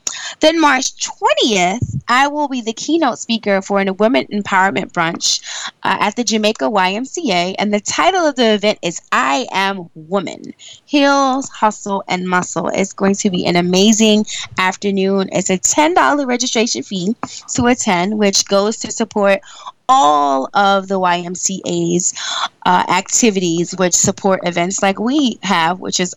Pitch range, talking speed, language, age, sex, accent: 185-230 Hz, 150 wpm, English, 20-39, female, American